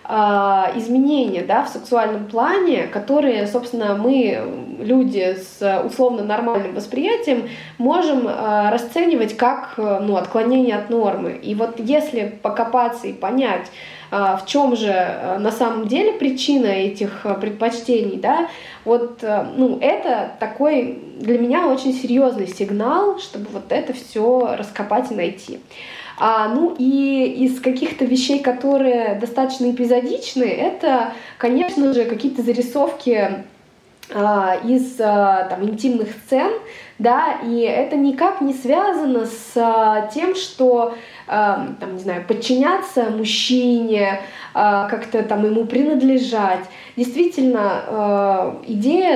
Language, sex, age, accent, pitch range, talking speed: Russian, female, 20-39, native, 215-265 Hz, 110 wpm